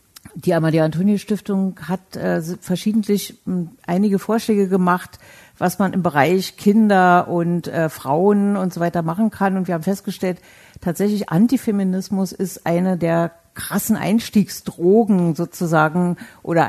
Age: 50-69